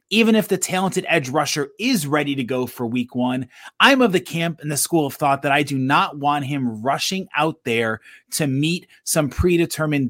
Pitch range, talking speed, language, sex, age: 140-175 Hz, 210 wpm, English, male, 30-49